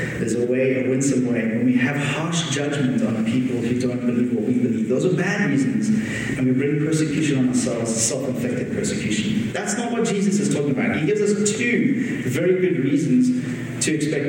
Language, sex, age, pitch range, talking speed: English, male, 30-49, 130-165 Hz, 195 wpm